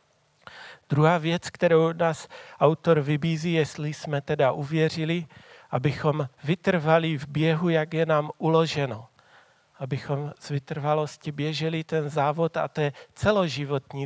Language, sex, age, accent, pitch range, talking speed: Czech, male, 40-59, native, 130-155 Hz, 120 wpm